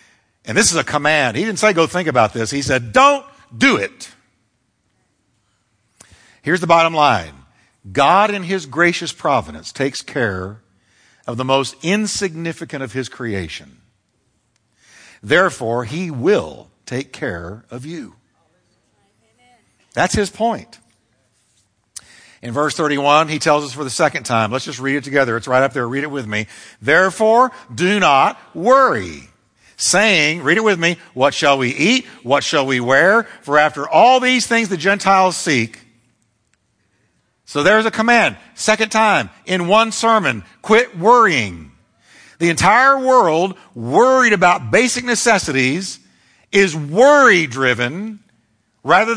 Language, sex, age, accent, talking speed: English, male, 60-79, American, 140 wpm